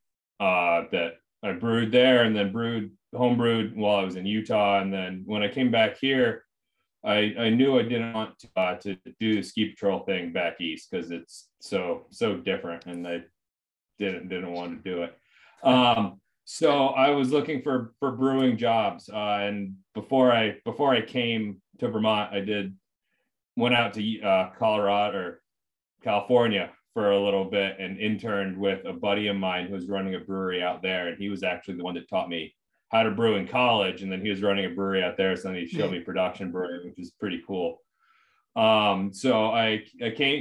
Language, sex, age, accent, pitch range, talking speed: English, male, 30-49, American, 95-115 Hz, 200 wpm